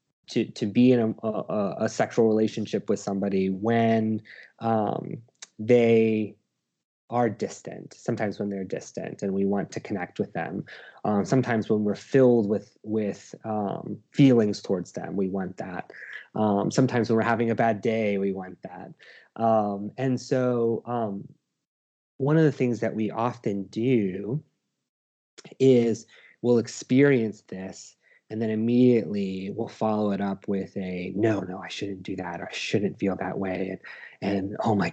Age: 20-39